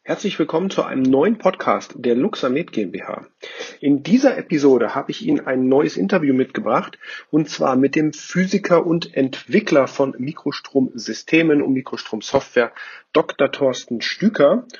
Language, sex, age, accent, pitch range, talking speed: German, male, 40-59, German, 135-180 Hz, 135 wpm